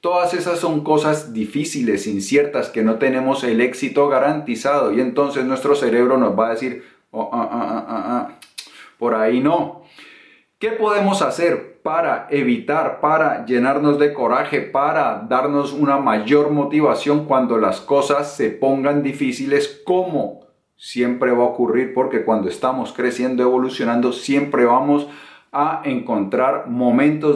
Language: Spanish